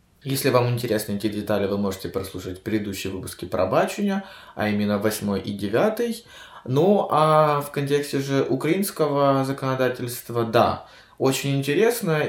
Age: 20-39